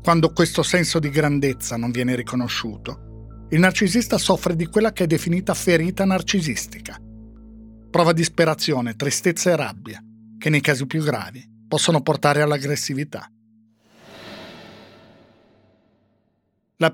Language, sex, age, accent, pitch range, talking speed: Italian, male, 50-69, native, 125-175 Hz, 115 wpm